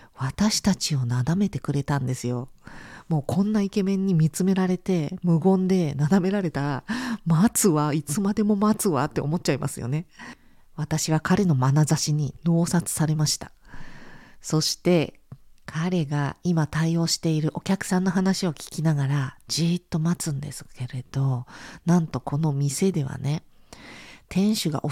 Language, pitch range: Japanese, 145-190 Hz